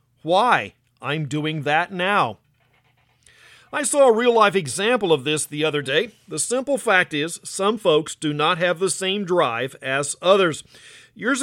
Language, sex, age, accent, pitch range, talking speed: English, male, 50-69, American, 155-205 Hz, 160 wpm